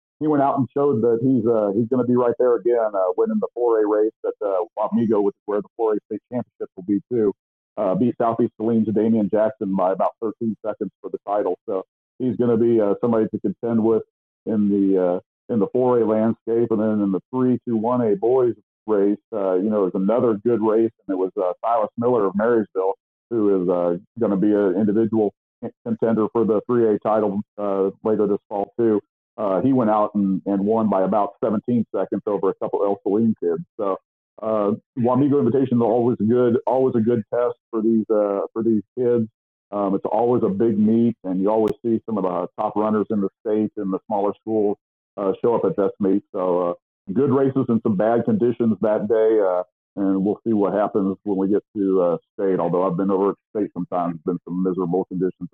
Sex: male